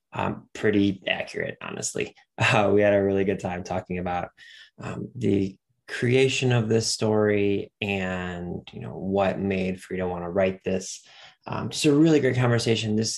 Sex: male